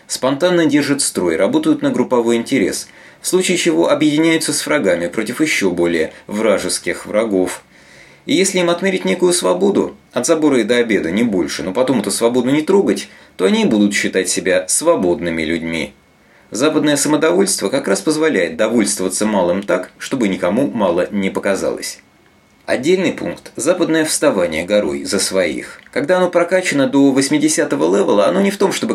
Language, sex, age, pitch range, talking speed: Russian, male, 30-49, 115-170 Hz, 160 wpm